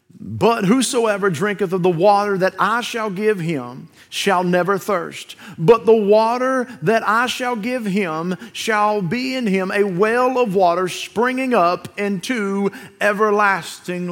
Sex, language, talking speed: male, English, 145 wpm